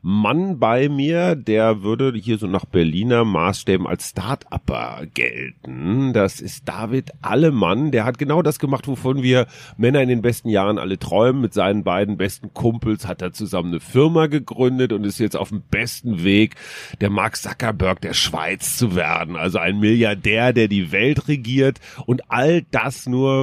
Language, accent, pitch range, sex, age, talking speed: German, German, 100-135 Hz, male, 40-59, 170 wpm